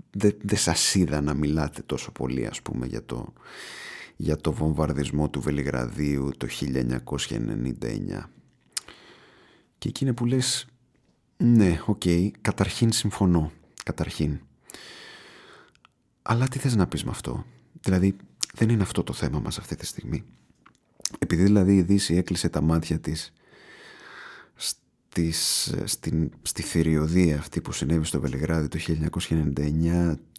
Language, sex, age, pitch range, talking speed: Greek, male, 30-49, 75-90 Hz, 125 wpm